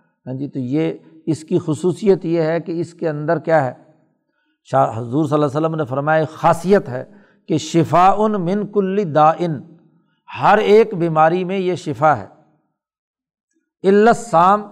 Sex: male